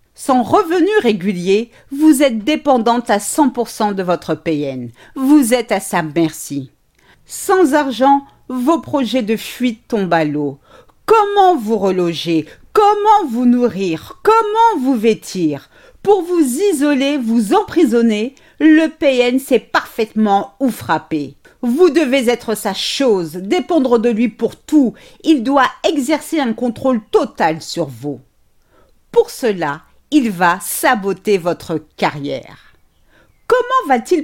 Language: French